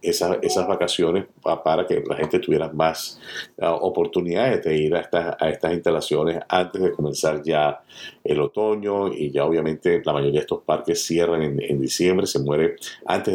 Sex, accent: male, Venezuelan